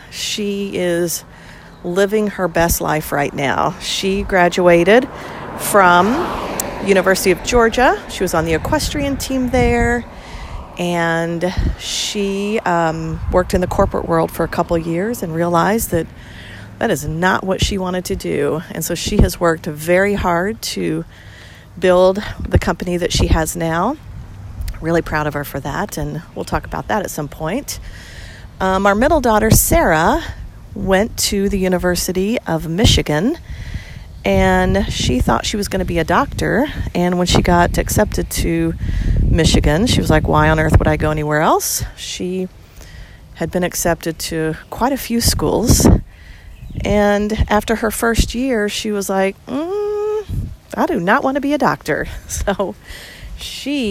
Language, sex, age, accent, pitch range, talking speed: English, female, 40-59, American, 160-205 Hz, 155 wpm